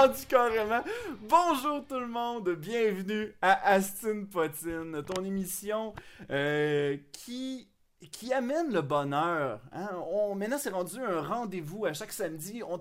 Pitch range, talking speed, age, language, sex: 155-215 Hz, 135 wpm, 30-49, French, male